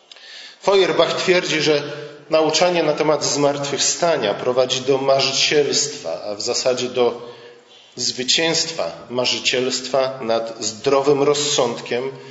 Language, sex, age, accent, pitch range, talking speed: Polish, male, 40-59, native, 120-150 Hz, 95 wpm